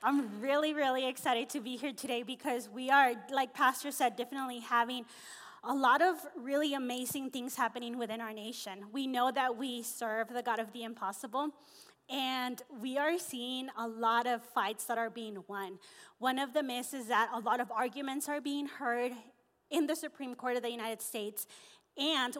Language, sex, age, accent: English, female, 20-39, American